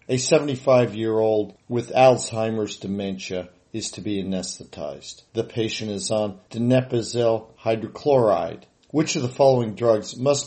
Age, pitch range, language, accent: 50-69, 105-125 Hz, English, American